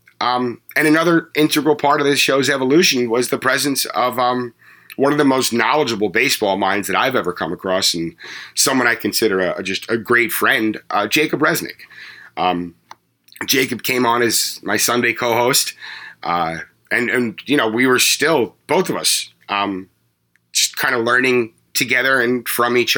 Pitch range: 110-135 Hz